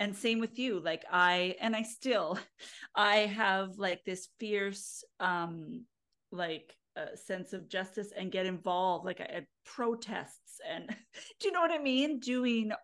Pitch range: 195-250 Hz